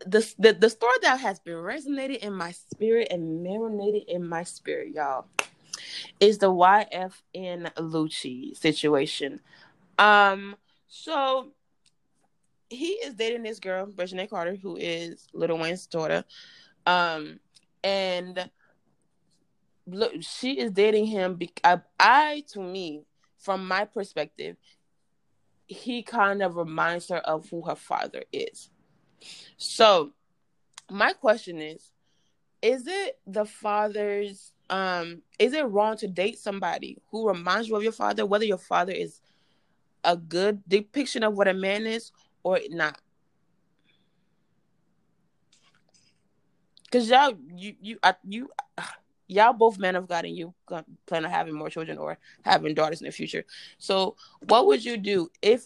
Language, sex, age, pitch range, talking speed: English, female, 20-39, 175-225 Hz, 135 wpm